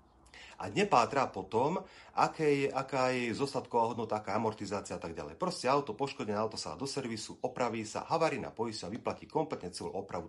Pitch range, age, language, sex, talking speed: 95-140 Hz, 40-59, Slovak, male, 180 wpm